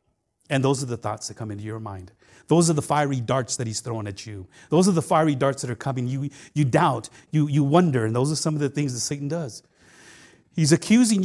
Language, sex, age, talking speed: English, male, 40-59, 245 wpm